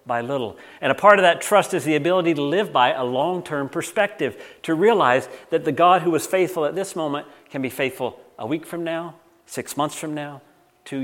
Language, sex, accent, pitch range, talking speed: English, male, American, 140-175 Hz, 215 wpm